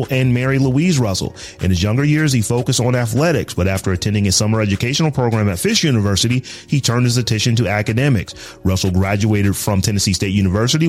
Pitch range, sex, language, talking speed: 100-130 Hz, male, English, 185 wpm